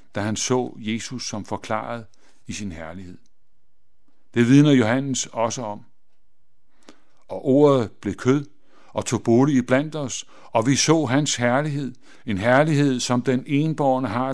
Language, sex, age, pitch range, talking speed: Danish, male, 60-79, 110-135 Hz, 140 wpm